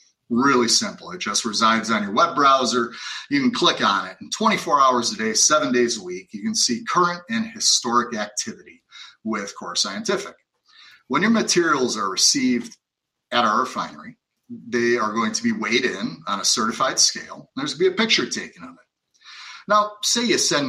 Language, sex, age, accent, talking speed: English, male, 30-49, American, 190 wpm